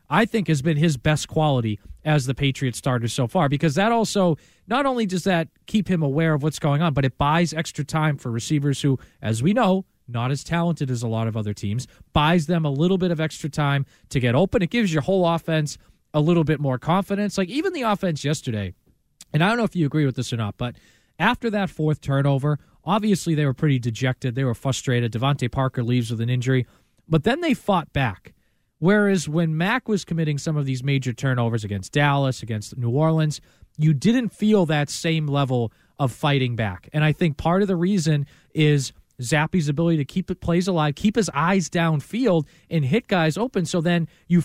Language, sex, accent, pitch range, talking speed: English, male, American, 135-180 Hz, 215 wpm